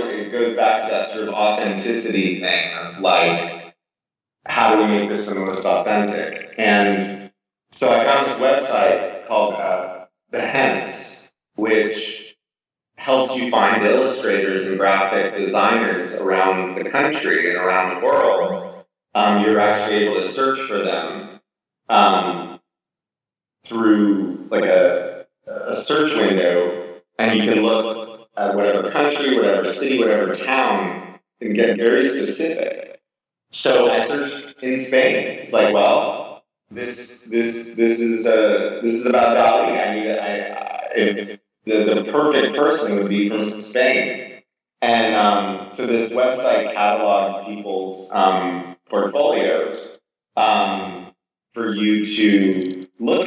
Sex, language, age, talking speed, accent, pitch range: male, English, 30-49, 130 wpm, American, 100-130 Hz